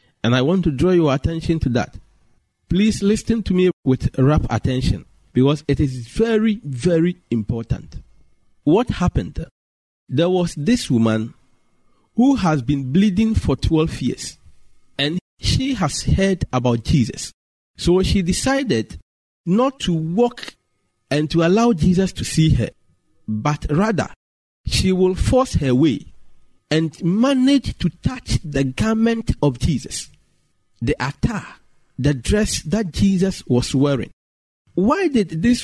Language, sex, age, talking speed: English, male, 50-69, 135 wpm